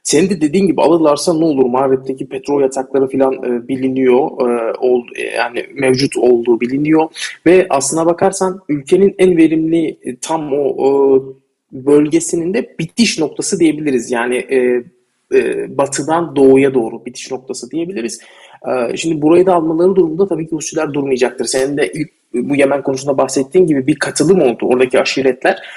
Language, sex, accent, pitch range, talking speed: Turkish, male, native, 130-165 Hz, 155 wpm